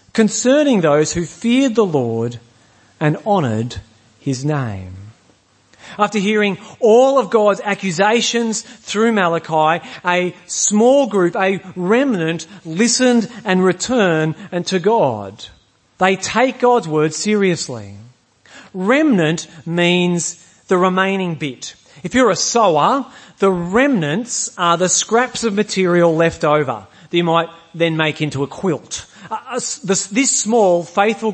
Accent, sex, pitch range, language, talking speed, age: Australian, male, 155-225 Hz, English, 125 wpm, 40-59